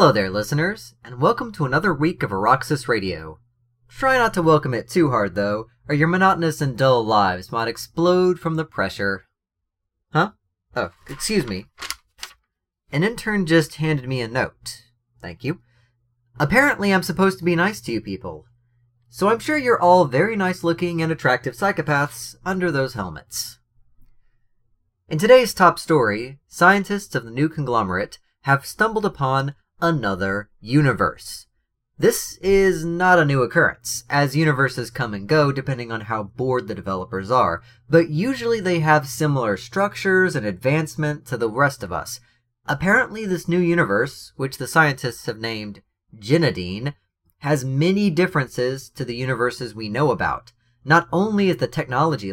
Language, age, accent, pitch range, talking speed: English, 30-49, American, 115-170 Hz, 155 wpm